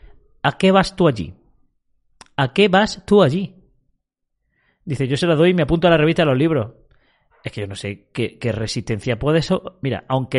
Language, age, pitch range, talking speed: Spanish, 30-49, 120-180 Hz, 210 wpm